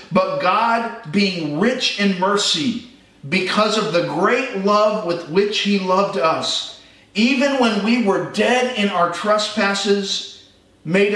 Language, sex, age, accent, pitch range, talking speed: English, male, 40-59, American, 155-200 Hz, 135 wpm